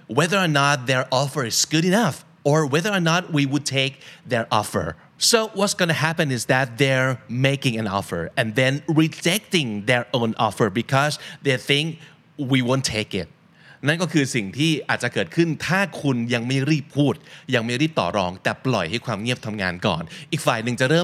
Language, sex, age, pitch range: Thai, male, 30-49, 115-155 Hz